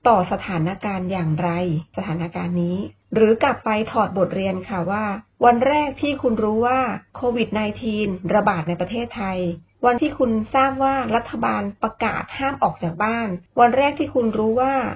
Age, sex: 30-49, female